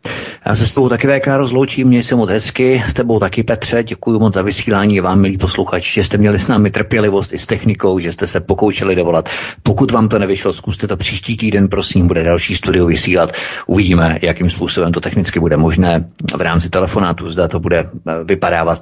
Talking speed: 200 wpm